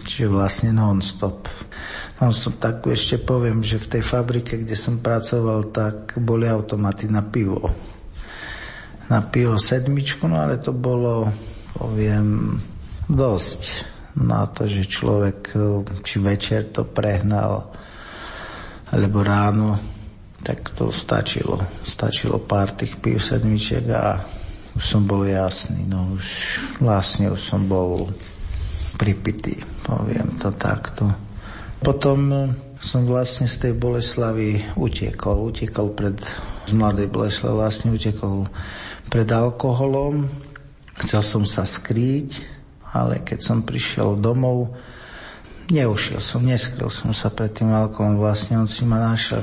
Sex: male